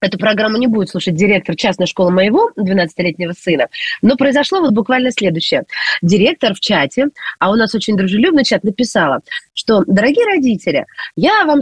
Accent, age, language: native, 30-49, Russian